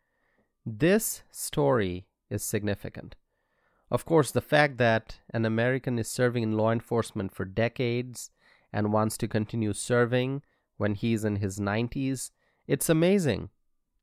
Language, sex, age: English, male, 30-49